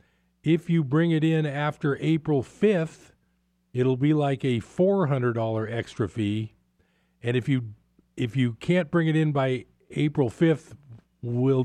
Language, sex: English, male